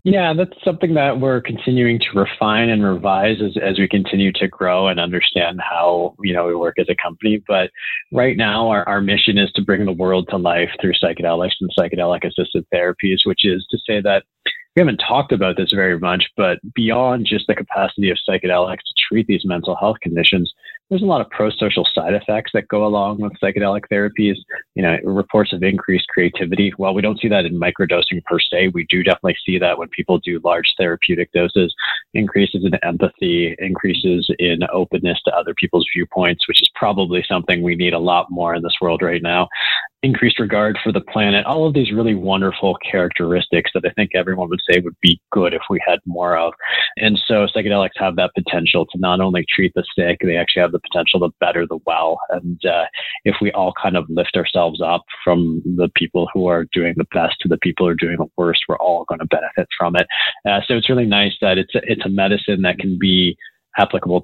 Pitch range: 90-105 Hz